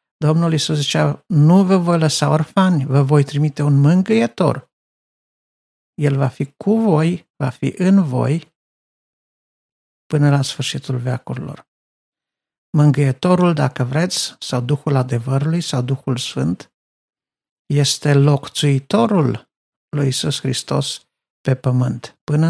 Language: Romanian